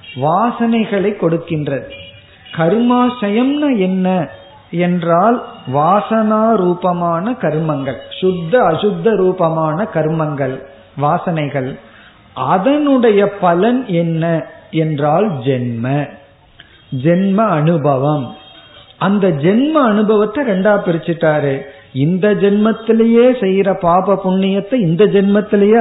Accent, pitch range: native, 145-210 Hz